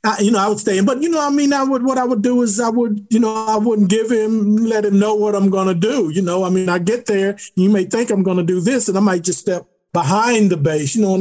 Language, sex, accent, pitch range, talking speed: English, male, American, 175-220 Hz, 315 wpm